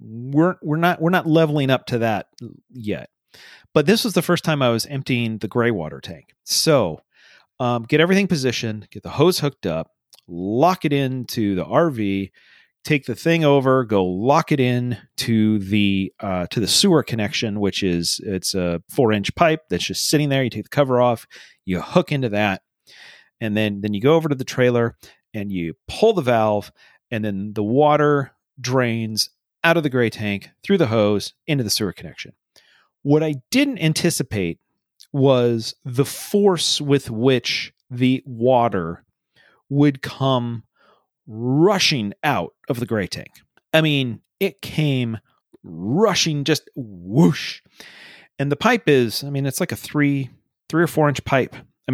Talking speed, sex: 170 wpm, male